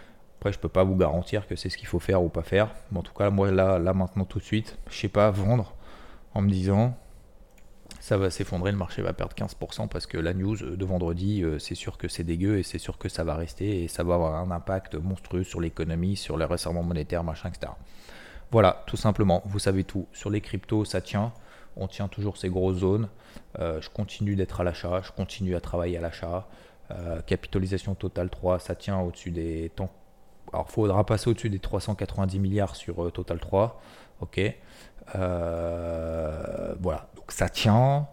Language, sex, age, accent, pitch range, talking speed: French, male, 30-49, French, 85-105 Hz, 205 wpm